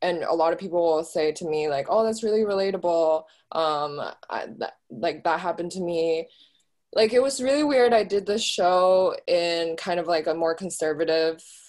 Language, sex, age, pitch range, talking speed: English, female, 20-39, 160-195 Hz, 185 wpm